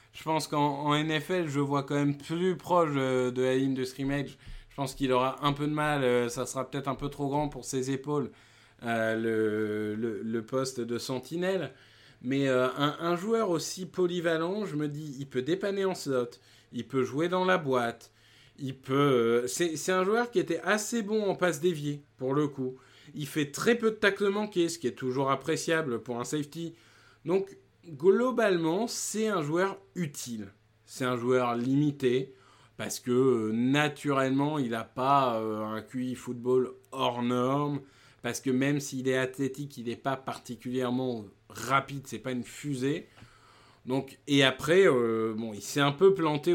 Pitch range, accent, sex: 125-150 Hz, French, male